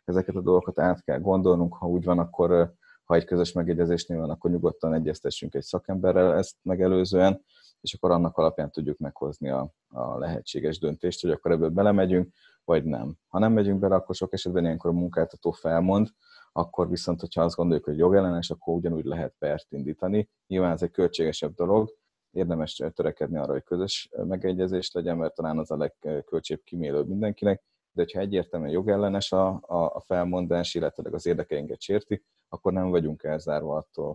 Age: 30-49